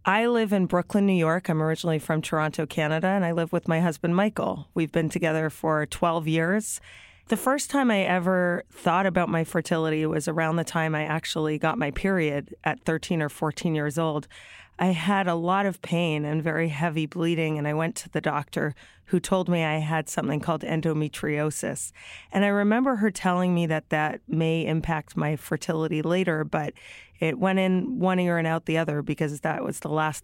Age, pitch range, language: 30-49, 155-170 Hz, English